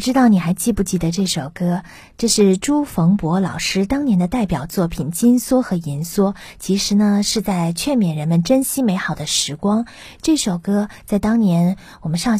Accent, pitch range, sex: native, 175-245 Hz, female